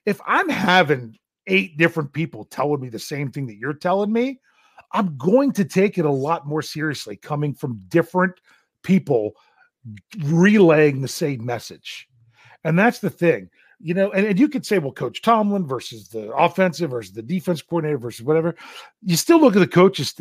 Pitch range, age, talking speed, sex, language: 135-185 Hz, 40-59, 180 wpm, male, English